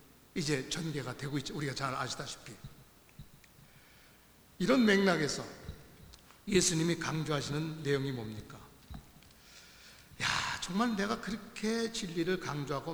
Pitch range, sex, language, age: 150-205 Hz, male, Korean, 60-79